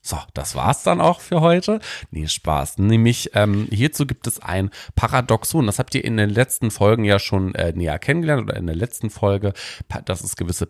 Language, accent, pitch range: German, German, 90-120 Hz